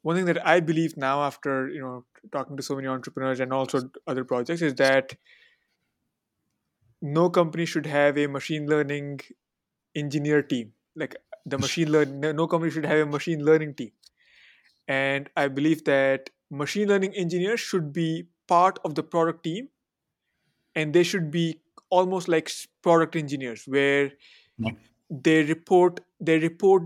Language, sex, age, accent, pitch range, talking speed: English, male, 20-39, Indian, 145-185 Hz, 150 wpm